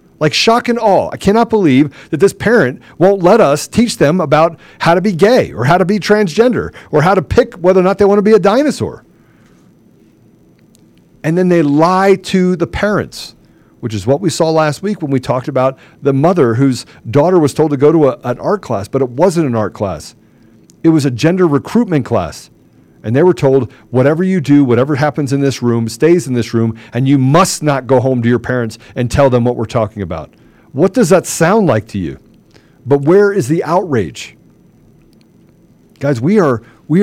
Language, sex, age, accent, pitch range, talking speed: English, male, 40-59, American, 120-180 Hz, 205 wpm